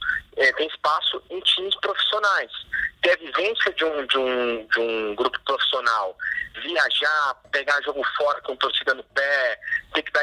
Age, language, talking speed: 30-49, Portuguese, 165 wpm